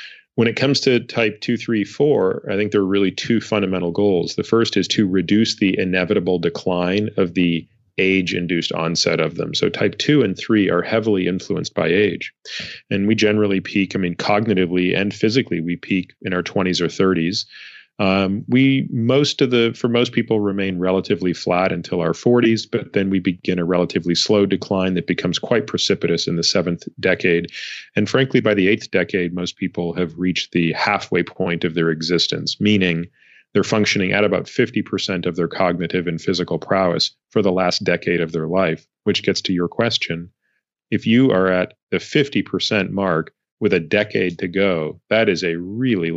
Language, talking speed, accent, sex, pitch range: English, 185 wpm, American, male, 90-105 Hz